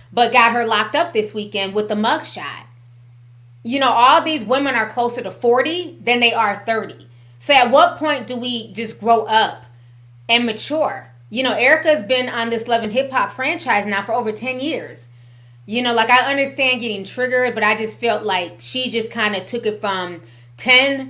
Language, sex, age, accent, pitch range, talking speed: English, female, 20-39, American, 185-245 Hz, 195 wpm